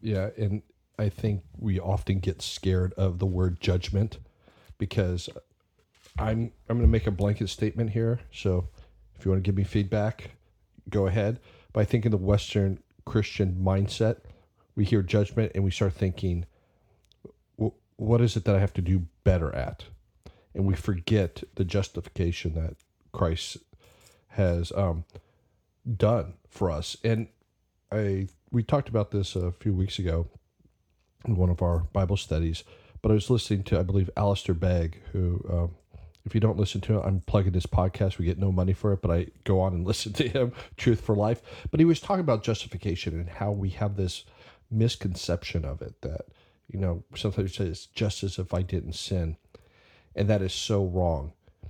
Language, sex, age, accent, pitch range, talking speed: English, male, 40-59, American, 90-105 Hz, 180 wpm